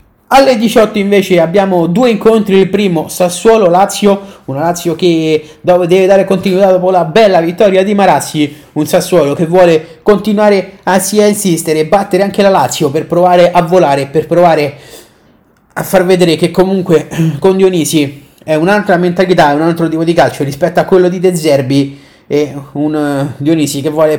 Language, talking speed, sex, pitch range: Italian, 165 wpm, male, 155-195 Hz